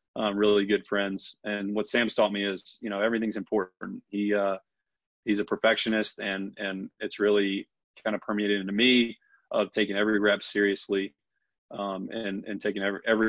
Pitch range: 100-110 Hz